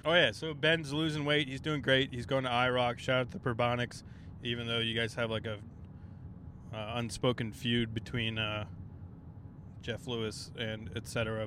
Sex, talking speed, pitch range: male, 185 wpm, 110-130 Hz